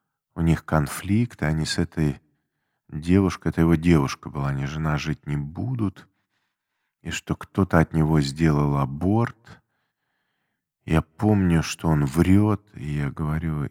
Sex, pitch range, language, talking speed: male, 75-100 Hz, Russian, 135 wpm